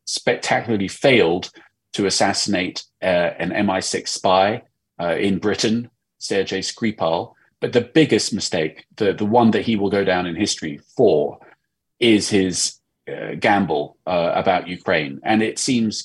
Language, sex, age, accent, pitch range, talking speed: English, male, 30-49, British, 90-110 Hz, 140 wpm